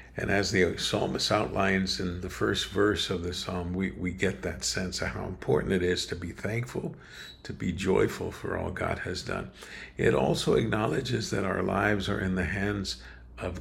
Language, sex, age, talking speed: English, male, 60-79, 195 wpm